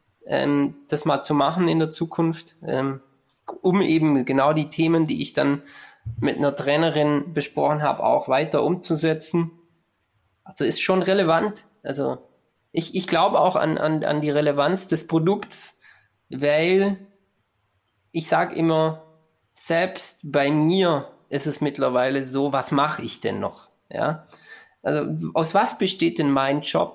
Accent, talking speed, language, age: German, 140 wpm, German, 20-39